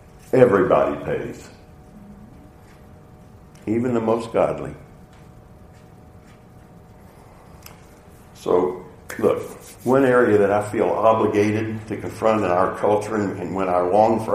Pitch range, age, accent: 100-125 Hz, 60-79, American